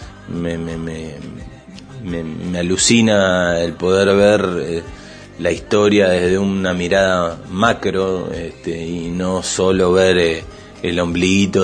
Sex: male